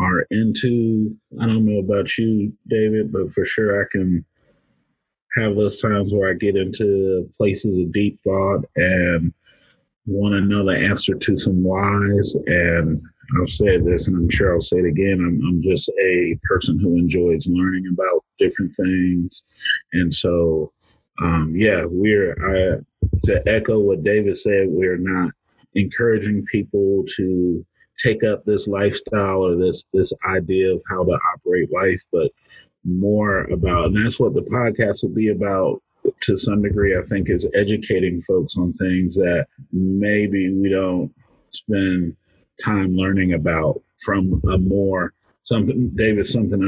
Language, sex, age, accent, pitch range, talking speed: English, male, 30-49, American, 90-105 Hz, 155 wpm